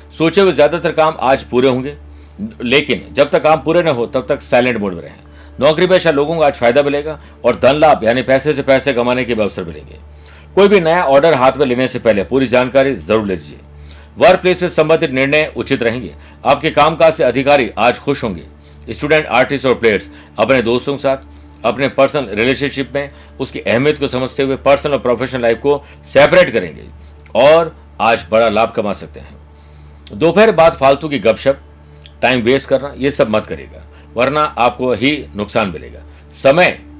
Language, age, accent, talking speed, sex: Hindi, 50-69, native, 185 wpm, male